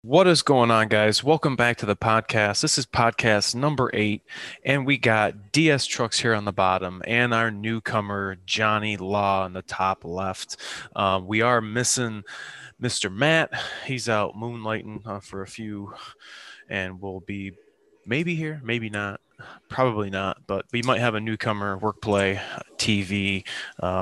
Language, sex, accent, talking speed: English, male, American, 160 wpm